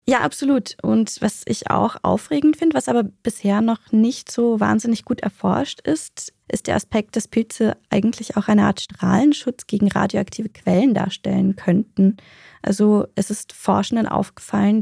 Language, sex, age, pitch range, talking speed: German, female, 20-39, 195-220 Hz, 155 wpm